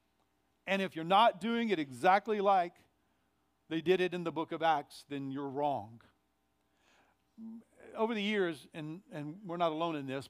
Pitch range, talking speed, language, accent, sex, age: 140-185 Hz, 170 wpm, English, American, male, 50-69